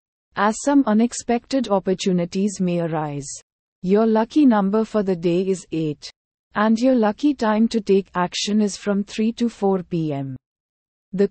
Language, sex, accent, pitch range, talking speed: English, female, Indian, 175-225 Hz, 150 wpm